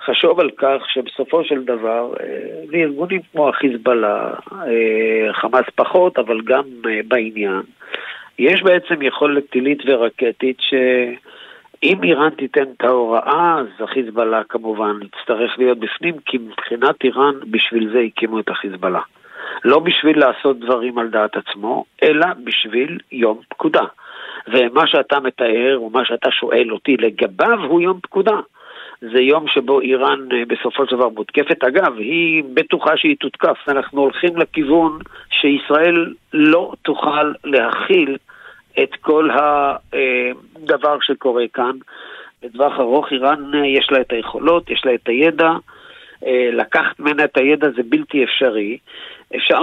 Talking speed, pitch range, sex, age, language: 130 wpm, 120-150 Hz, male, 50-69, Hebrew